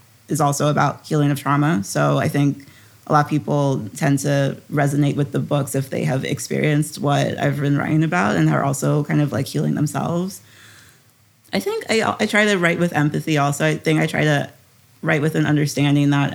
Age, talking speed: 30-49, 205 wpm